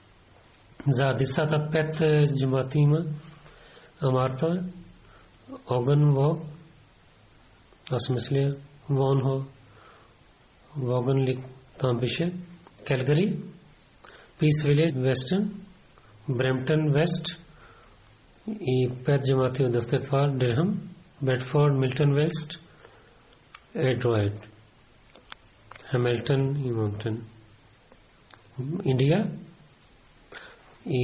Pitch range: 125-155 Hz